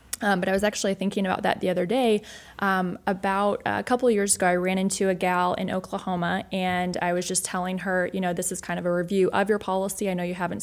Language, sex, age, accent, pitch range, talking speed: English, female, 20-39, American, 180-205 Hz, 260 wpm